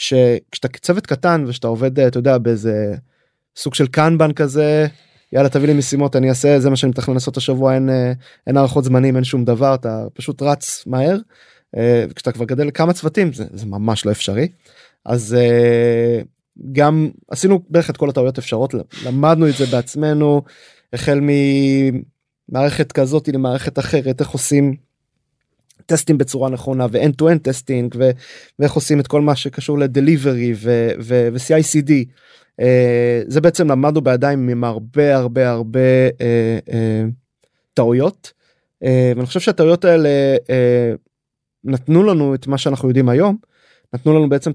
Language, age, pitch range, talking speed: Hebrew, 20-39, 125-150 Hz, 150 wpm